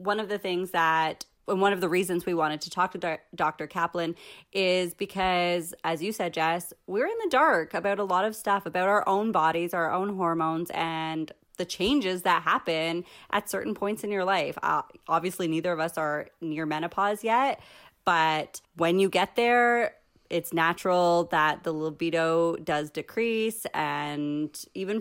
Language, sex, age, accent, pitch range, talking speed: English, female, 20-39, American, 155-190 Hz, 180 wpm